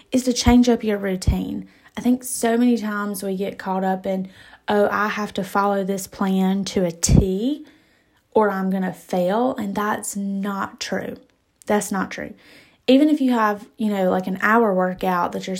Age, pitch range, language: 20-39, 195-240 Hz, English